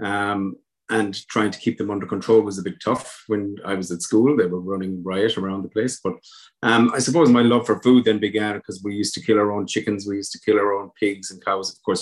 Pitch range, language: 100-115 Hz, English